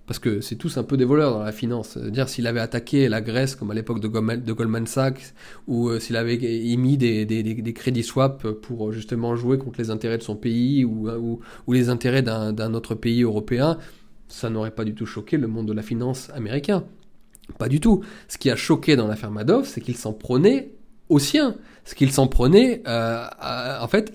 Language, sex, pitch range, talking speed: French, male, 115-145 Hz, 220 wpm